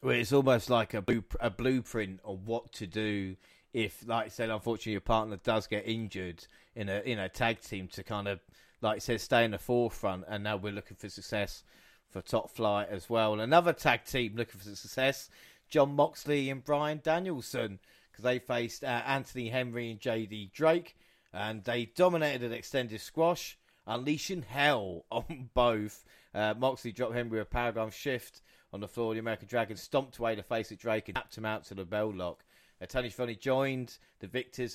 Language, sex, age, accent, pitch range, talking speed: English, male, 30-49, British, 105-130 Hz, 195 wpm